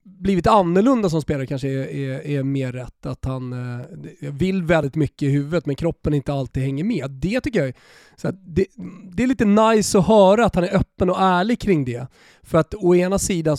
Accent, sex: native, male